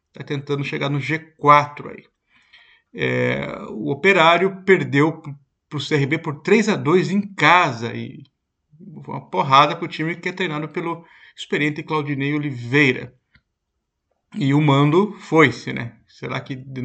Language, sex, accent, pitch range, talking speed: Portuguese, male, Brazilian, 140-180 Hz, 135 wpm